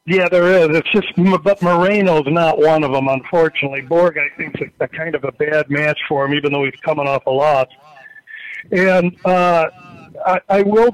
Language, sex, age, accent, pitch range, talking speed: English, male, 60-79, American, 170-205 Hz, 205 wpm